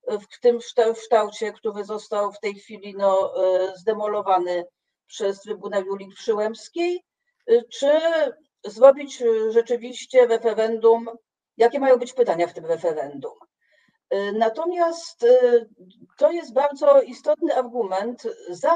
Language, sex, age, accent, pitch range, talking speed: Polish, female, 50-69, native, 200-275 Hz, 105 wpm